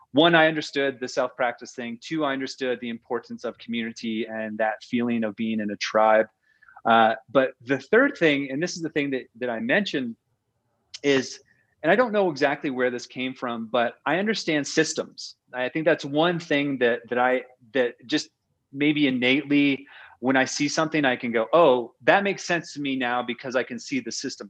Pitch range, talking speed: 120-165 Hz, 200 wpm